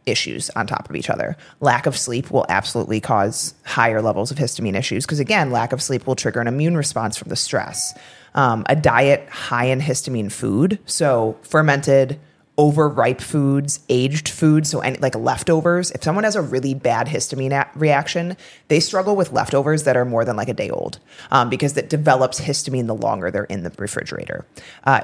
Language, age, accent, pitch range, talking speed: English, 30-49, American, 125-155 Hz, 190 wpm